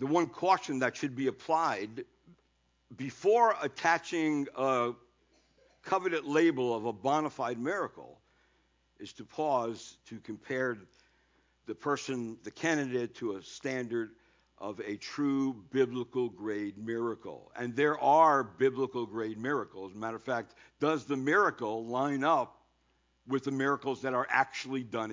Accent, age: American, 60-79